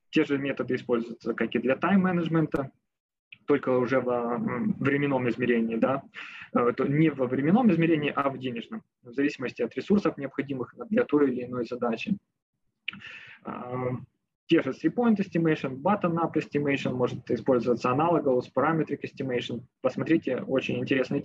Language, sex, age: Ukrainian, male, 20-39